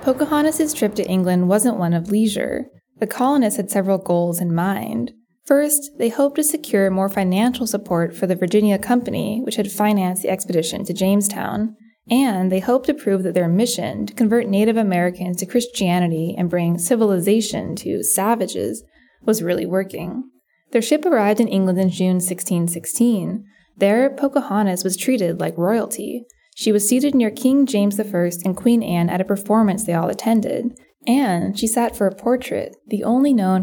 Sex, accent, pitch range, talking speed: female, American, 185-240 Hz, 170 wpm